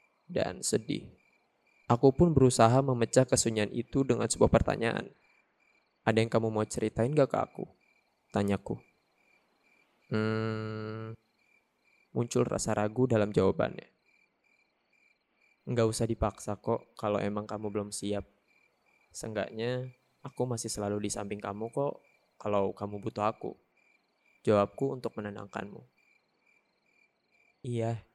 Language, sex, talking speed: Indonesian, male, 110 wpm